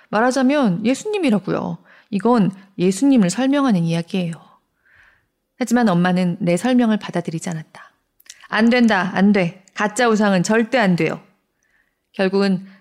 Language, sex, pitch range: Korean, female, 175-225 Hz